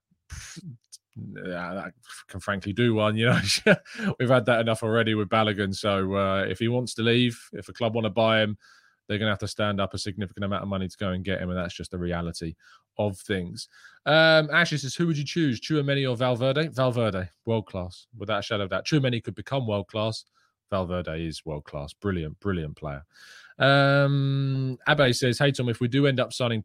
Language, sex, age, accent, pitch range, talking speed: English, male, 20-39, British, 100-120 Hz, 210 wpm